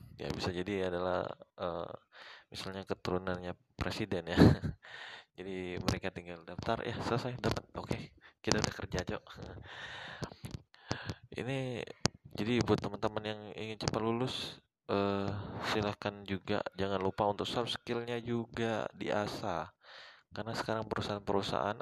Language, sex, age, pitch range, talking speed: Indonesian, male, 20-39, 100-120 Hz, 115 wpm